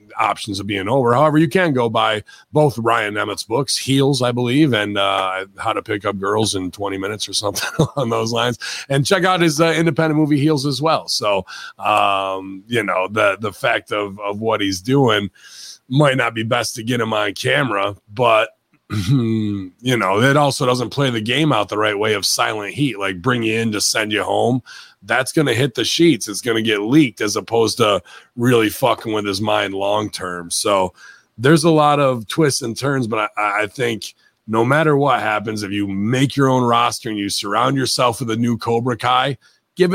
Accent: American